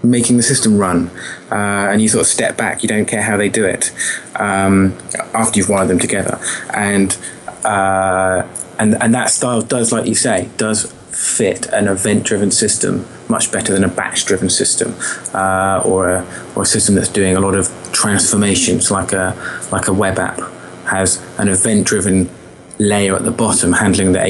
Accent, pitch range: British, 90-110 Hz